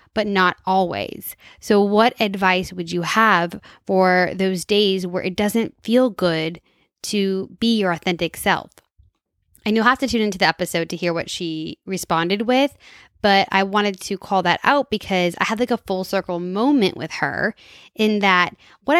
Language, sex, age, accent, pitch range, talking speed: English, female, 10-29, American, 180-215 Hz, 175 wpm